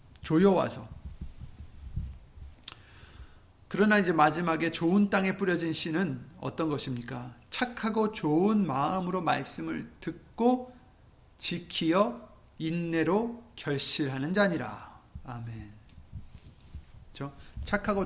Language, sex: Korean, male